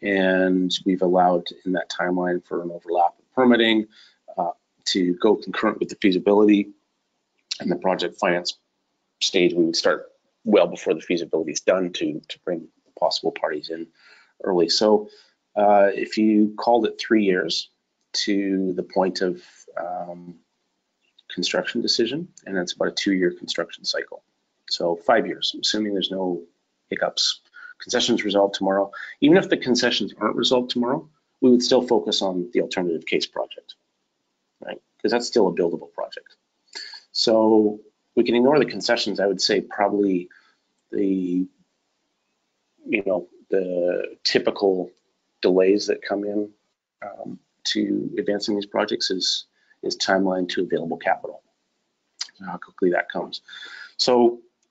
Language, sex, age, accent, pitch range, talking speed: English, male, 30-49, American, 95-120 Hz, 145 wpm